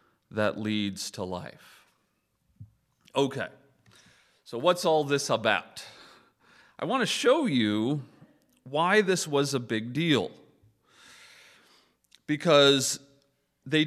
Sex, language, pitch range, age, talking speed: male, English, 110-150 Hz, 40-59, 100 wpm